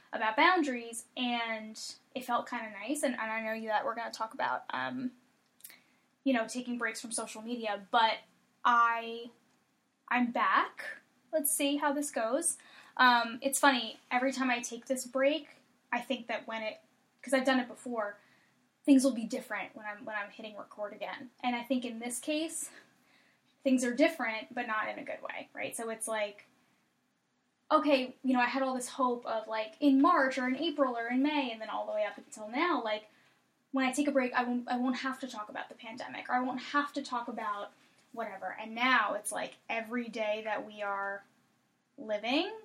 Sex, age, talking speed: female, 10-29, 205 wpm